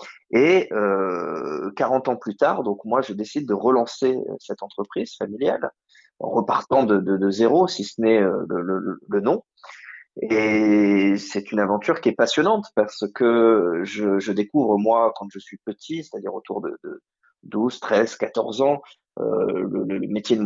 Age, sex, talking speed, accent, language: 30-49, male, 165 wpm, French, French